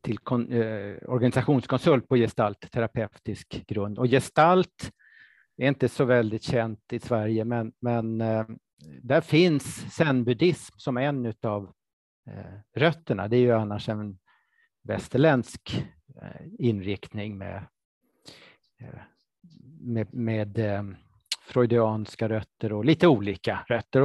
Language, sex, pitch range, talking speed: Swedish, male, 110-135 Hz, 120 wpm